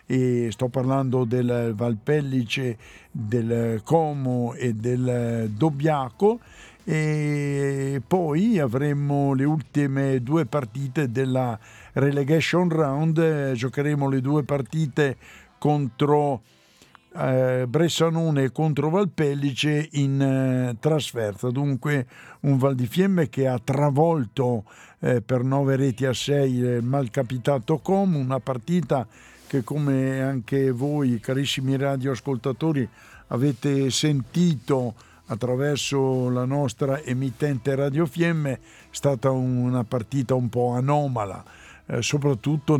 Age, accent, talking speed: 60-79, native, 100 wpm